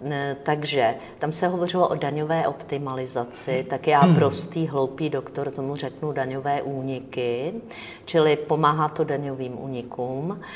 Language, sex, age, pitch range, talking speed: Czech, female, 50-69, 135-160 Hz, 120 wpm